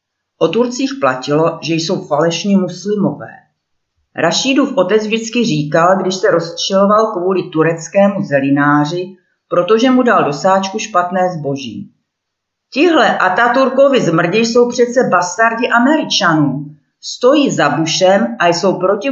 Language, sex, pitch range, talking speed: Czech, female, 150-225 Hz, 120 wpm